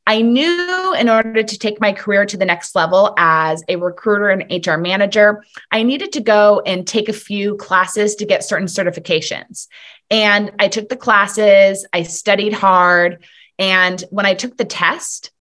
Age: 20-39